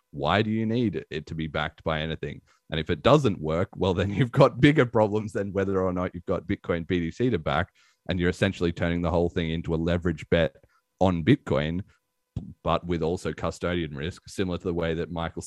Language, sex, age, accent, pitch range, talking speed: English, male, 30-49, Australian, 80-95 Hz, 215 wpm